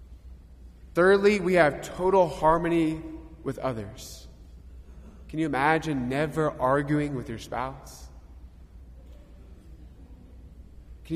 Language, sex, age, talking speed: English, male, 20-39, 85 wpm